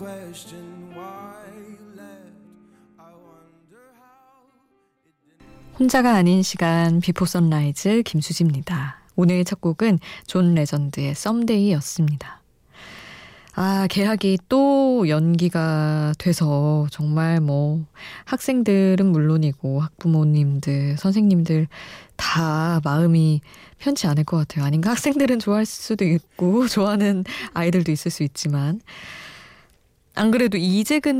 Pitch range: 155-205 Hz